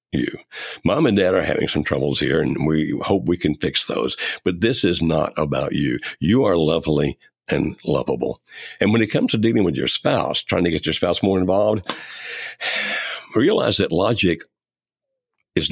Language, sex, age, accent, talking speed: English, male, 60-79, American, 180 wpm